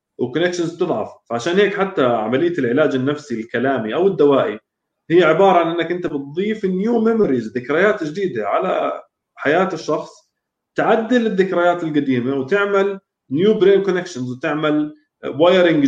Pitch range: 135-180 Hz